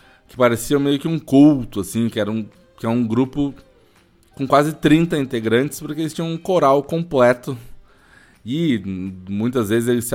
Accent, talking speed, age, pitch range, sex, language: Brazilian, 170 wpm, 20-39, 100-135 Hz, male, Portuguese